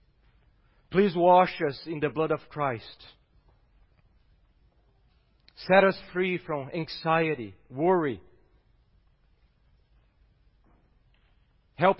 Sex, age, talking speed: male, 40-59, 75 wpm